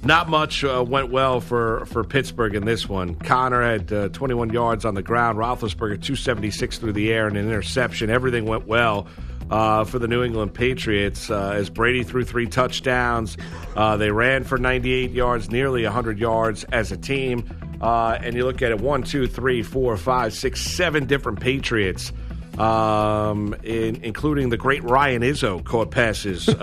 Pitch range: 110-130 Hz